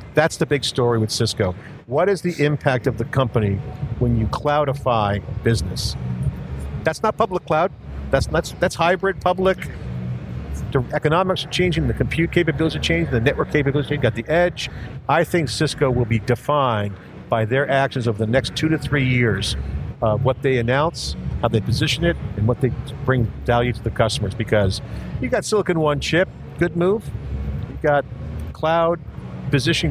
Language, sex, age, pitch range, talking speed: English, male, 50-69, 120-160 Hz, 180 wpm